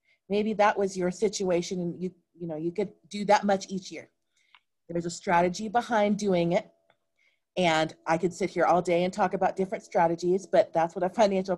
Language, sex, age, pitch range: English, female, 30-49, 175-220 Hz